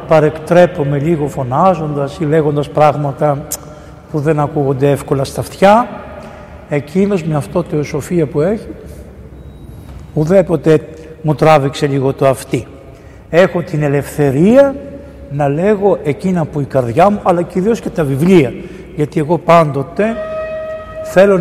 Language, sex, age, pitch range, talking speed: Greek, male, 60-79, 145-185 Hz, 125 wpm